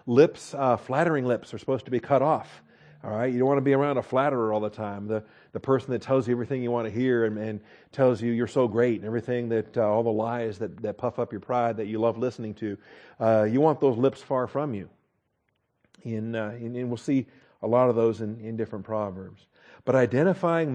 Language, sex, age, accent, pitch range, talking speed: English, male, 50-69, American, 120-140 Hz, 245 wpm